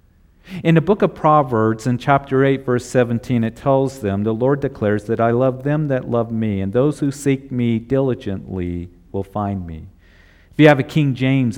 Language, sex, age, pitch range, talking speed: English, male, 50-69, 100-140 Hz, 195 wpm